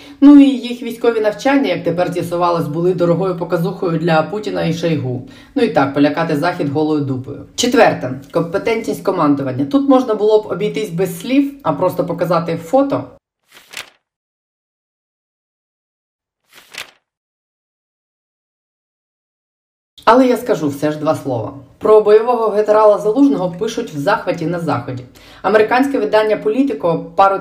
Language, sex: Ukrainian, female